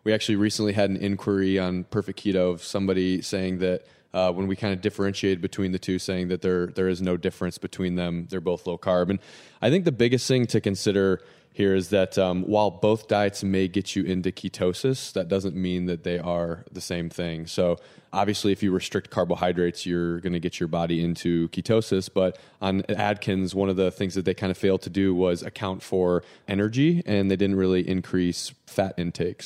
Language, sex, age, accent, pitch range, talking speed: English, male, 20-39, American, 90-100 Hz, 210 wpm